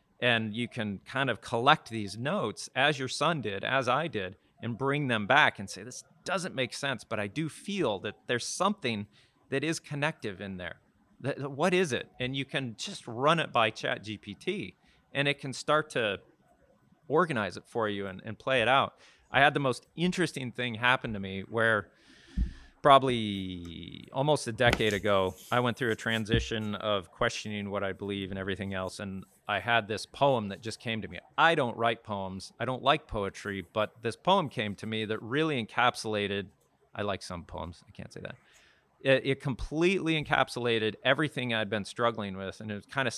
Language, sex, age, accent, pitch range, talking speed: English, male, 40-59, American, 100-130 Hz, 195 wpm